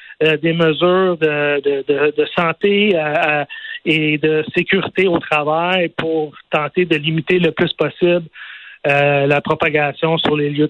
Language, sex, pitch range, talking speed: French, male, 160-195 Hz, 145 wpm